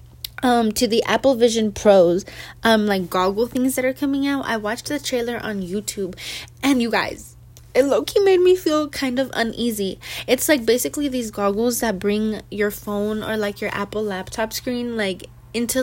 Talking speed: 180 wpm